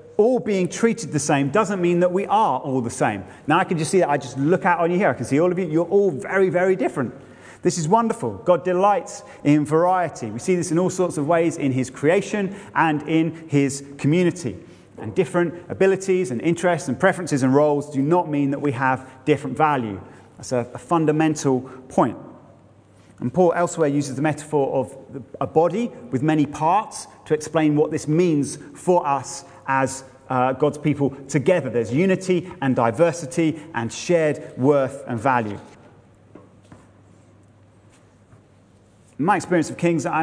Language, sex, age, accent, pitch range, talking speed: English, male, 30-49, British, 130-175 Hz, 175 wpm